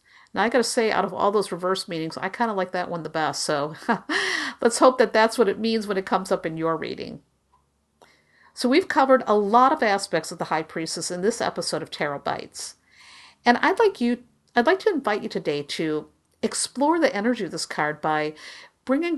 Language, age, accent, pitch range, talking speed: English, 50-69, American, 175-250 Hz, 215 wpm